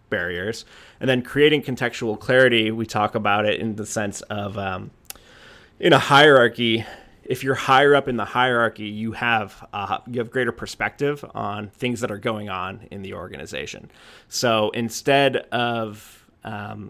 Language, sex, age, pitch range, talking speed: English, male, 20-39, 105-120 Hz, 160 wpm